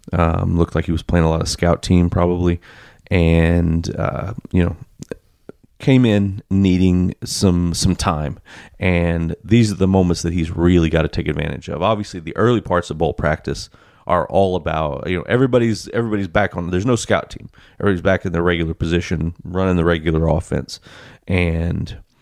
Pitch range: 85-105 Hz